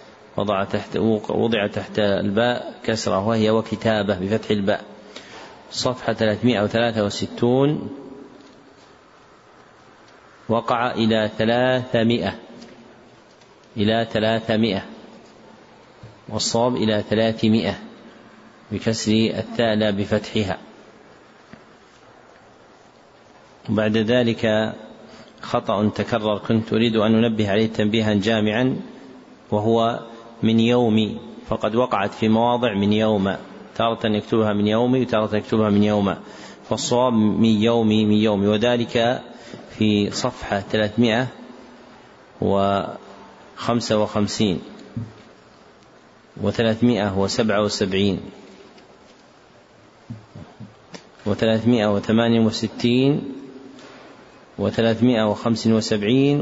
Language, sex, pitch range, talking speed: Arabic, male, 105-115 Hz, 65 wpm